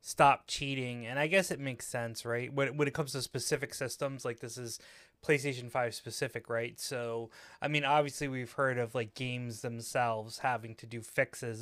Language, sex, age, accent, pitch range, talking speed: English, male, 20-39, American, 115-145 Hz, 190 wpm